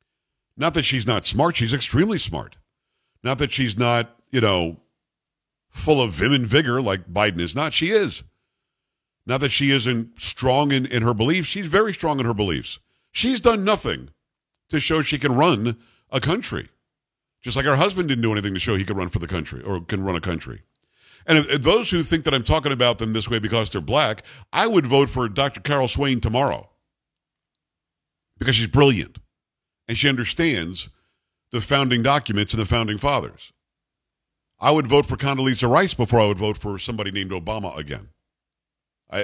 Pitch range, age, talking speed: 100-145 Hz, 50-69, 185 wpm